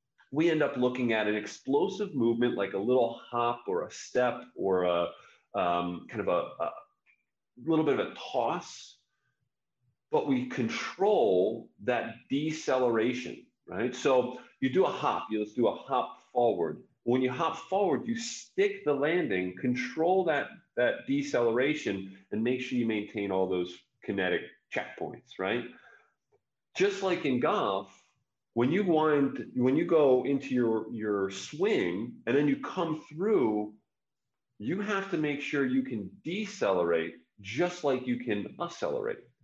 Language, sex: English, male